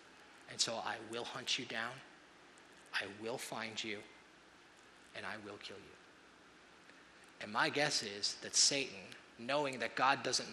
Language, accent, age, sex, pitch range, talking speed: English, American, 30-49, male, 125-170 Hz, 150 wpm